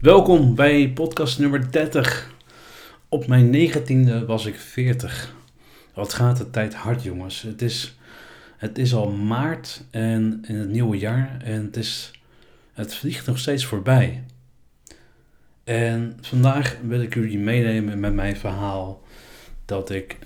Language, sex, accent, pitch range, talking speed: Dutch, male, Dutch, 100-115 Hz, 140 wpm